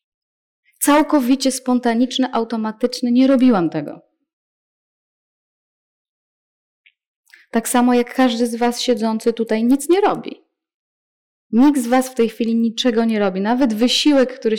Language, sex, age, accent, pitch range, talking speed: Polish, female, 20-39, native, 215-260 Hz, 120 wpm